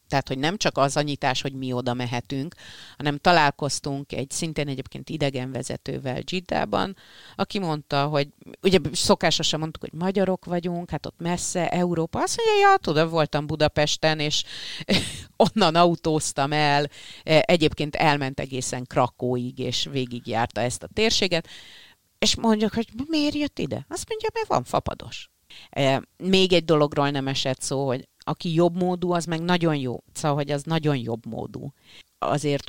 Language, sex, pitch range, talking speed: Hungarian, female, 130-170 Hz, 150 wpm